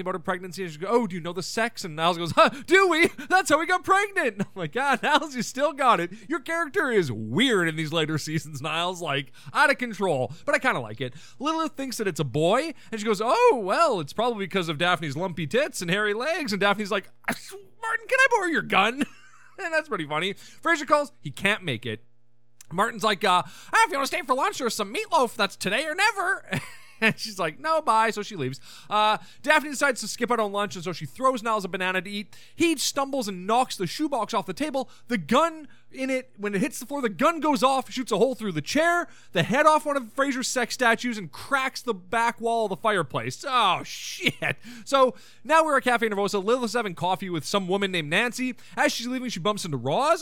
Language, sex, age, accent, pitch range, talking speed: English, male, 30-49, American, 185-285 Hz, 240 wpm